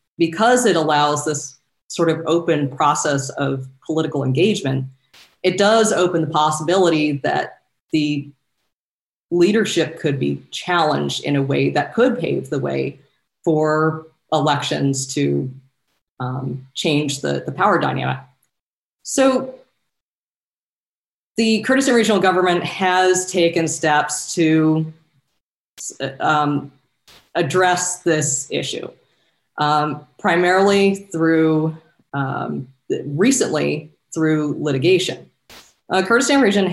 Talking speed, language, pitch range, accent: 100 wpm, English, 145-180 Hz, American